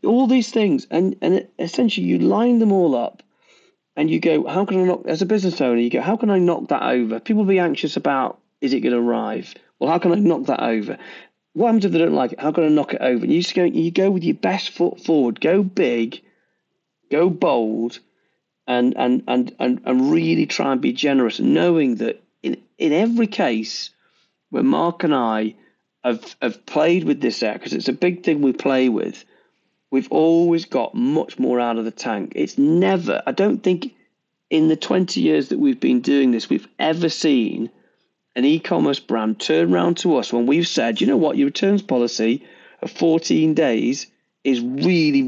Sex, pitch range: male, 125-195 Hz